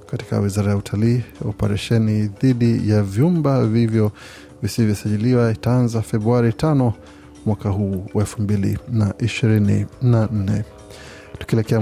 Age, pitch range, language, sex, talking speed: 30-49, 105-120 Hz, Swahili, male, 85 wpm